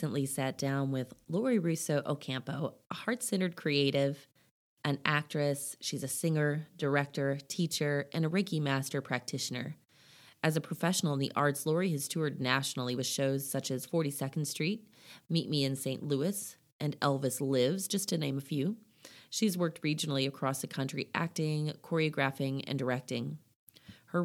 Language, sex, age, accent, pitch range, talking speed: English, female, 30-49, American, 140-165 Hz, 155 wpm